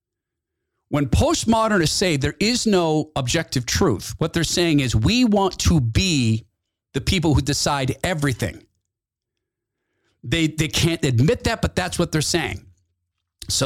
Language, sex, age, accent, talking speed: English, male, 40-59, American, 140 wpm